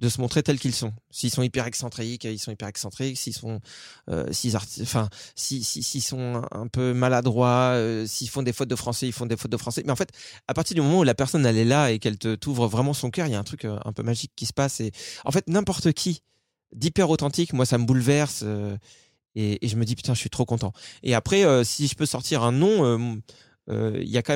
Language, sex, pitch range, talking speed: French, male, 110-135 Hz, 255 wpm